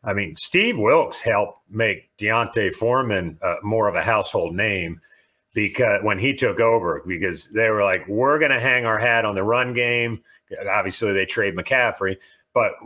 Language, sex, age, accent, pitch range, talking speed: English, male, 40-59, American, 105-140 Hz, 175 wpm